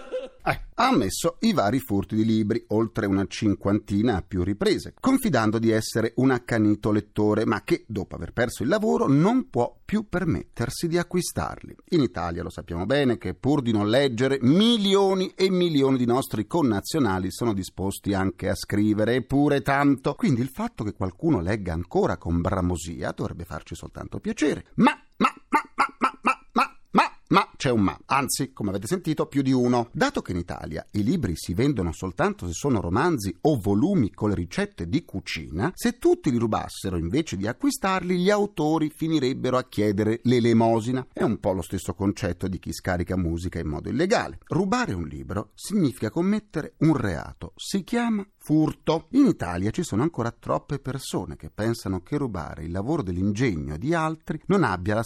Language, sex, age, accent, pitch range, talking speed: Italian, male, 40-59, native, 95-165 Hz, 170 wpm